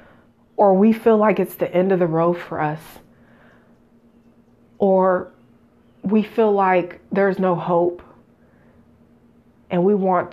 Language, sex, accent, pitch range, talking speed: English, female, American, 165-200 Hz, 130 wpm